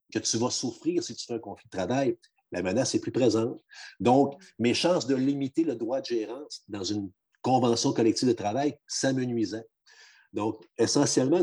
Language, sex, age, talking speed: French, male, 50-69, 180 wpm